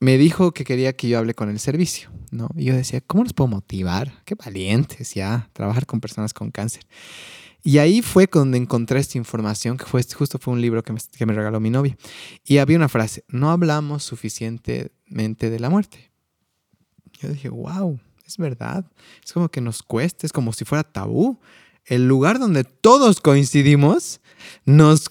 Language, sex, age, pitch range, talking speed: Spanish, male, 20-39, 110-145 Hz, 190 wpm